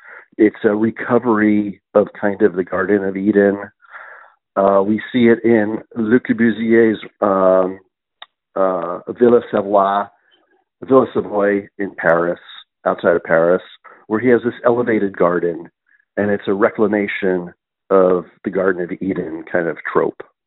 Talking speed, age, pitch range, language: 130 wpm, 50-69, 100-130 Hz, English